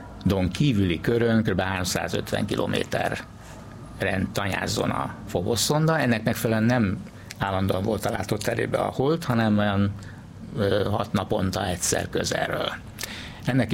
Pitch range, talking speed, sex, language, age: 95-115 Hz, 115 wpm, male, Hungarian, 60-79